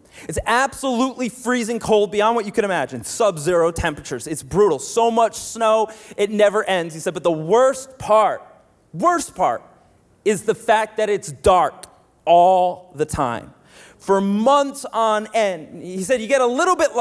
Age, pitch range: 30-49, 170-265 Hz